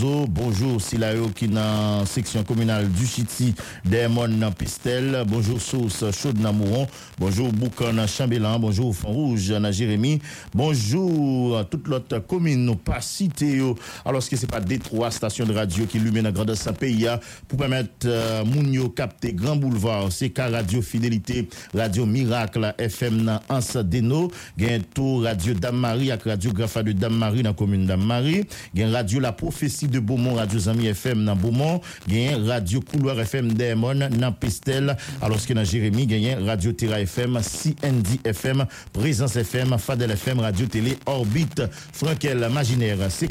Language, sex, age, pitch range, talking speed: English, male, 50-69, 110-130 Hz, 160 wpm